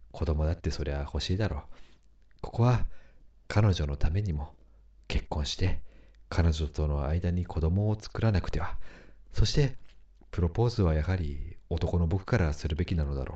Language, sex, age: Japanese, male, 40-59